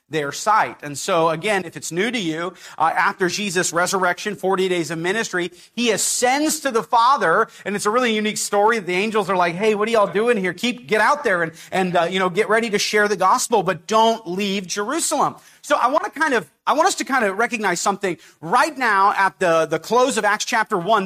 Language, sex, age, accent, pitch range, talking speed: English, male, 40-59, American, 185-260 Hz, 235 wpm